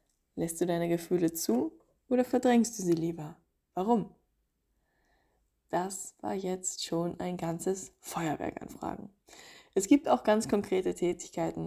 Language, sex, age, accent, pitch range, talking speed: German, female, 20-39, German, 170-215 Hz, 135 wpm